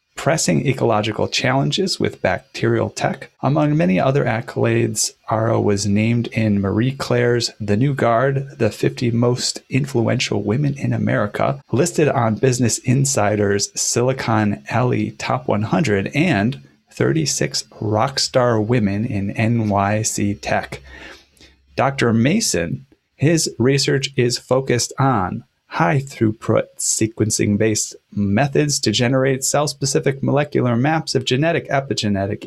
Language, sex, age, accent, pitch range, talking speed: English, male, 30-49, American, 110-135 Hz, 110 wpm